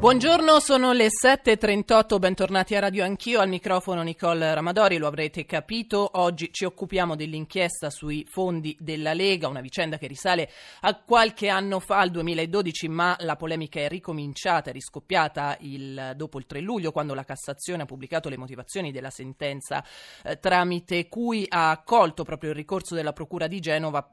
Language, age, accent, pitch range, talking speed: Italian, 30-49, native, 140-180 Hz, 160 wpm